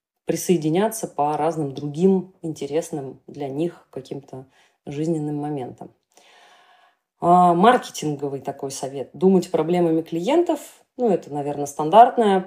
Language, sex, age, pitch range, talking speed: Russian, female, 20-39, 150-185 Hz, 95 wpm